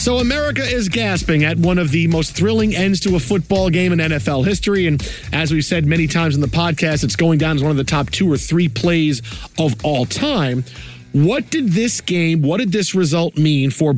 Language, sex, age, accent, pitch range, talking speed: English, male, 40-59, American, 150-180 Hz, 225 wpm